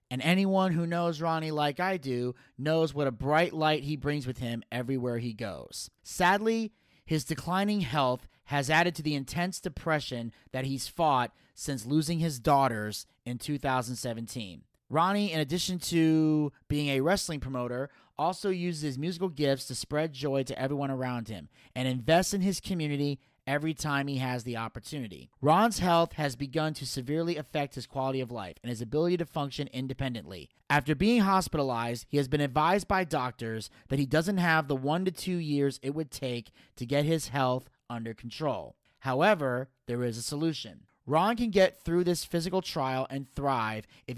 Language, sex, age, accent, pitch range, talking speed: English, male, 30-49, American, 125-165 Hz, 175 wpm